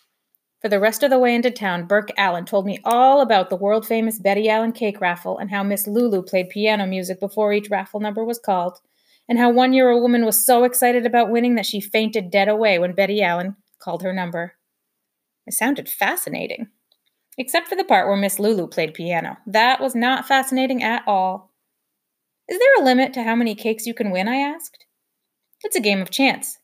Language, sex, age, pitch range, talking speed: English, female, 30-49, 200-250 Hz, 205 wpm